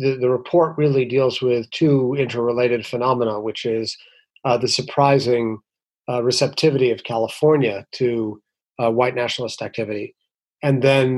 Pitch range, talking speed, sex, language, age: 120-150 Hz, 130 wpm, male, English, 40-59